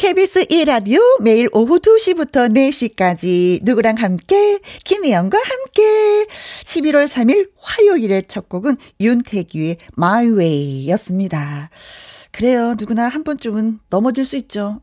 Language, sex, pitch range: Korean, female, 195-305 Hz